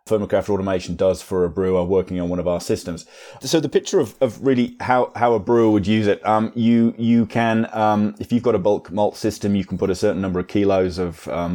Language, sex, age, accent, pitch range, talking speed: English, male, 30-49, British, 90-110 Hz, 245 wpm